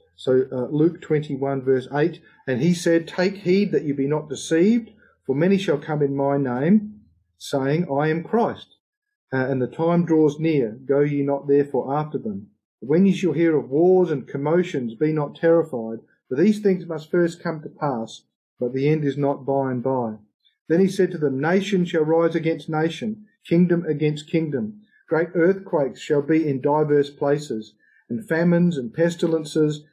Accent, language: Australian, English